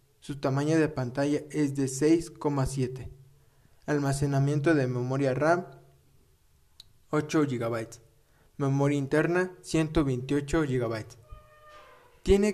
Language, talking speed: Spanish, 85 wpm